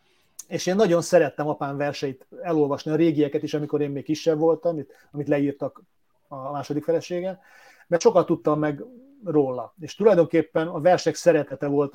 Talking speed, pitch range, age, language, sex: 155 wpm, 140-165 Hz, 30-49, Hungarian, male